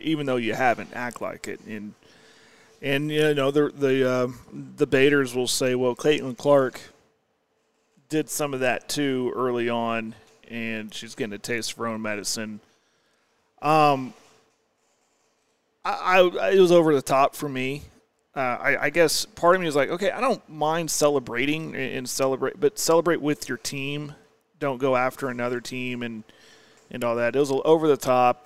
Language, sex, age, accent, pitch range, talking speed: English, male, 30-49, American, 120-150 Hz, 175 wpm